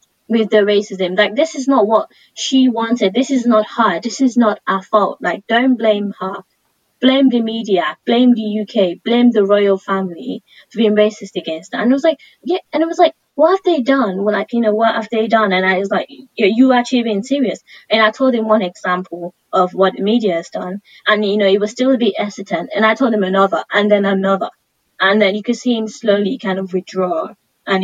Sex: female